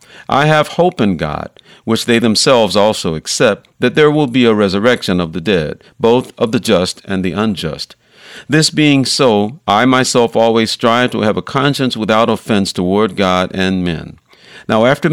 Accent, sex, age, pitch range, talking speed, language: American, male, 50-69, 100-130 Hz, 180 wpm, English